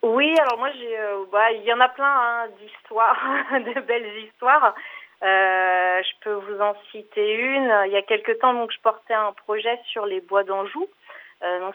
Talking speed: 200 wpm